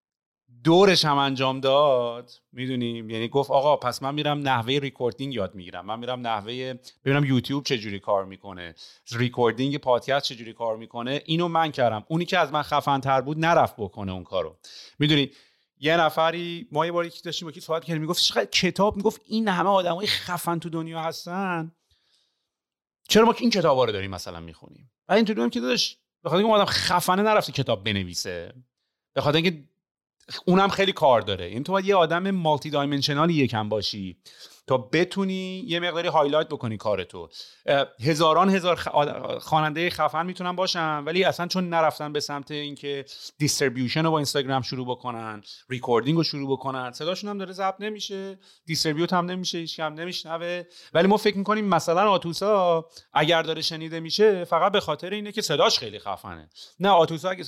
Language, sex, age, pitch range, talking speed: Persian, male, 30-49, 130-180 Hz, 165 wpm